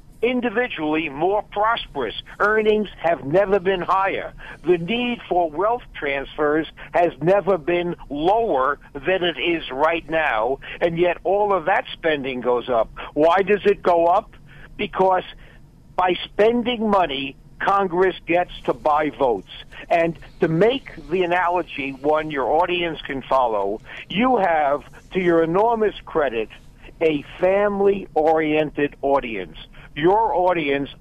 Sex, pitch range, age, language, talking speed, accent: male, 150-195 Hz, 60-79, English, 130 wpm, American